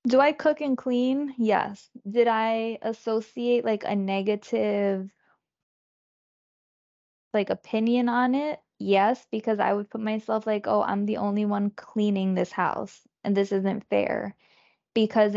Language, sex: English, female